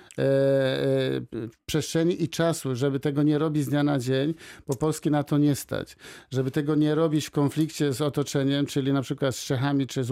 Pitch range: 140-165 Hz